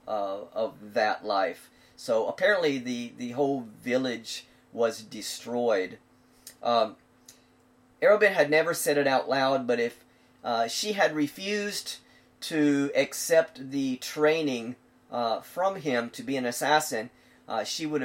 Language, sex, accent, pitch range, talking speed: English, male, American, 120-145 Hz, 135 wpm